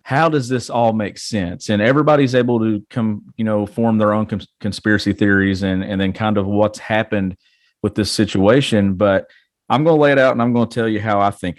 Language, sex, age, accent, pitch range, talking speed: English, male, 40-59, American, 100-120 Hz, 230 wpm